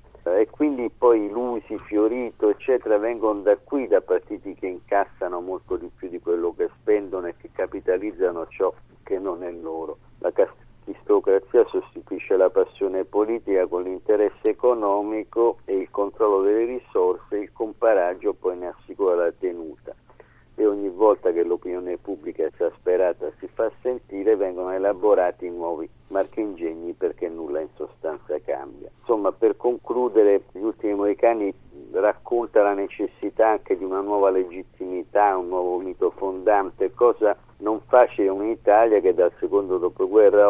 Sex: male